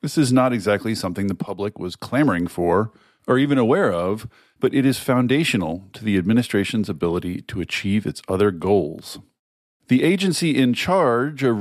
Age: 40-59